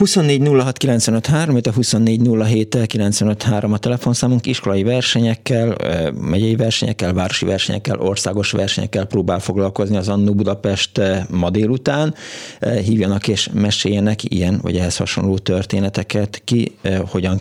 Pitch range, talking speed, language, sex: 95-115 Hz, 105 wpm, Hungarian, male